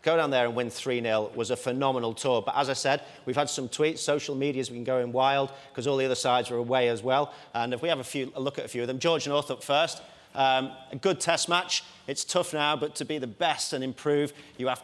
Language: English